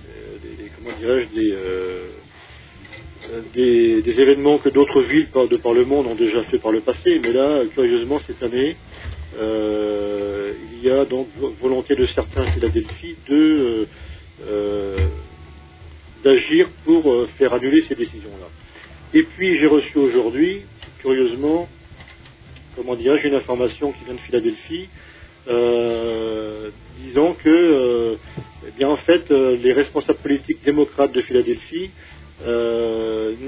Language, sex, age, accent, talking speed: French, male, 40-59, French, 135 wpm